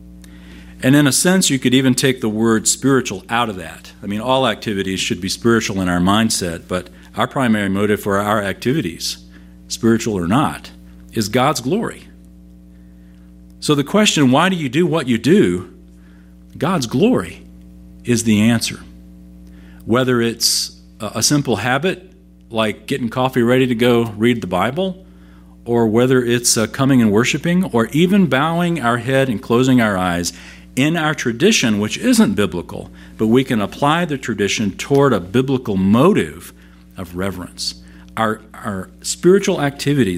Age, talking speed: 50-69, 155 wpm